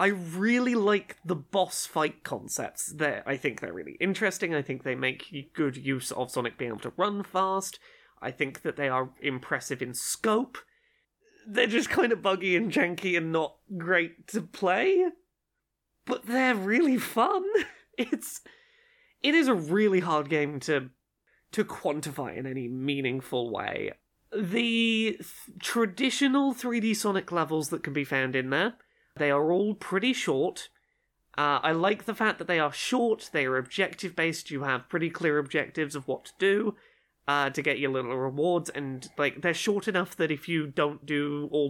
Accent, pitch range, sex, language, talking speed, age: British, 140-220 Hz, male, English, 170 wpm, 20-39